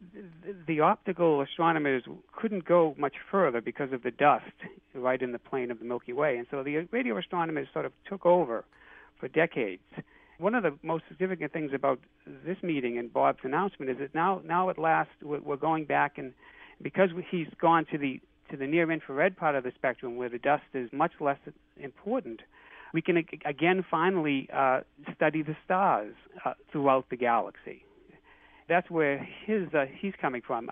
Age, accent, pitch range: 60-79, American, 130-175 Hz